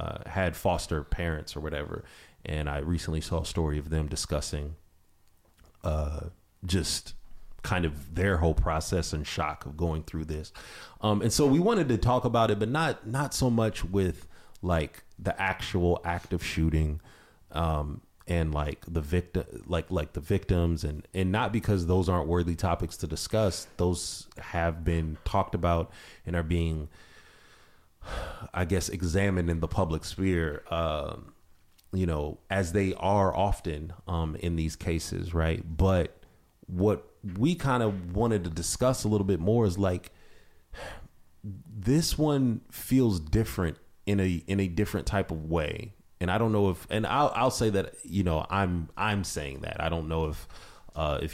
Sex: male